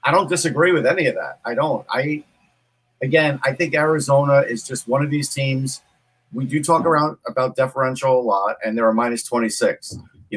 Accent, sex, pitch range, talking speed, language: American, male, 115-145 Hz, 195 wpm, English